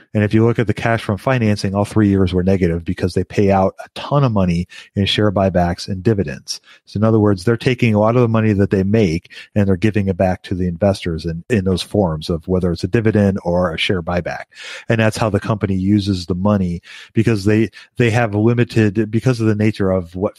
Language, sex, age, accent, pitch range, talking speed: English, male, 40-59, American, 95-110 Hz, 240 wpm